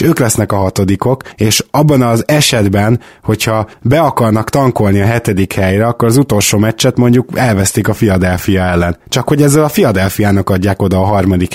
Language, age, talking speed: Hungarian, 20-39, 170 wpm